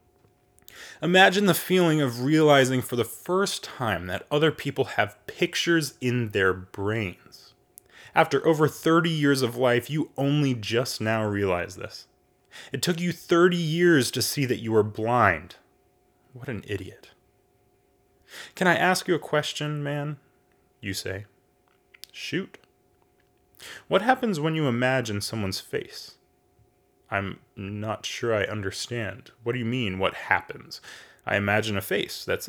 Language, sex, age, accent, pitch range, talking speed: English, male, 20-39, American, 105-160 Hz, 140 wpm